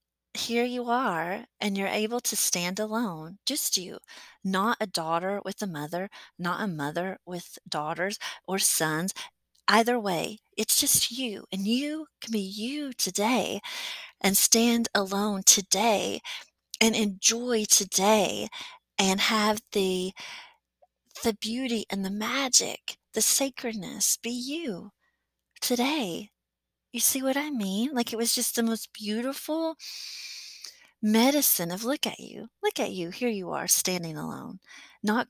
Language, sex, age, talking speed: English, female, 30-49, 140 wpm